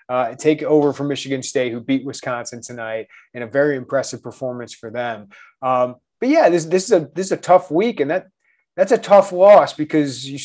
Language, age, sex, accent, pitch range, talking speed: English, 30-49, male, American, 130-155 Hz, 210 wpm